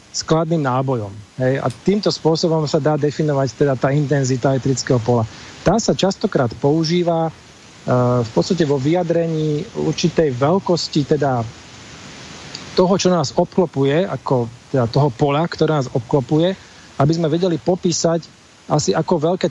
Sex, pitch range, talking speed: male, 130-170 Hz, 135 wpm